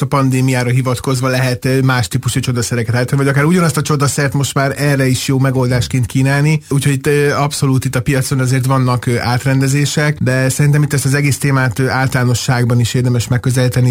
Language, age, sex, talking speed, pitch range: Hungarian, 30-49, male, 175 wpm, 120-135 Hz